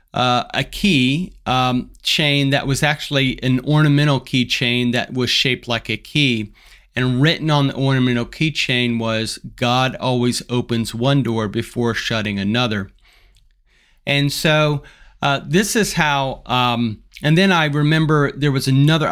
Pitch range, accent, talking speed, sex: 120-145 Hz, American, 150 wpm, male